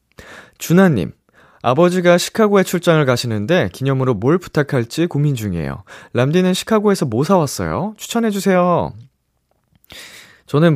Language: Korean